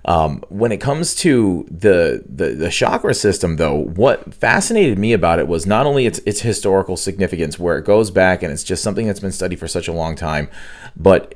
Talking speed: 210 wpm